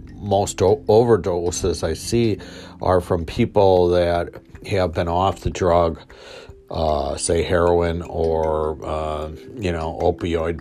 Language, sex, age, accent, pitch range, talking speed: English, male, 50-69, American, 85-100 Hz, 120 wpm